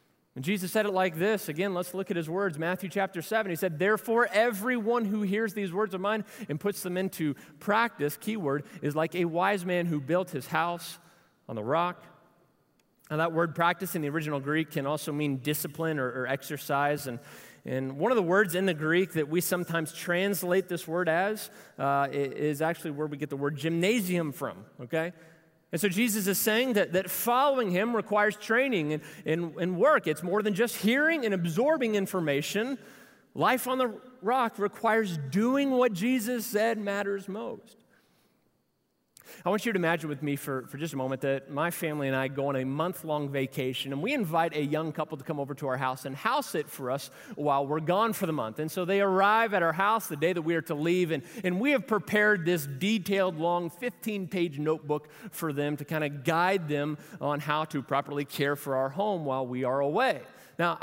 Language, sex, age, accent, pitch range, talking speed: English, male, 30-49, American, 150-200 Hz, 205 wpm